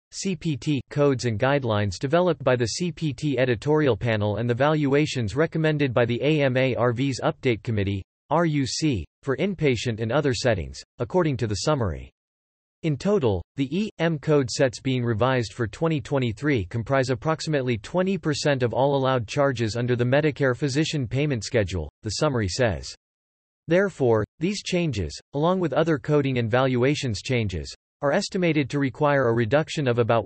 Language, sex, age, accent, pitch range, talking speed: English, male, 40-59, American, 115-150 Hz, 145 wpm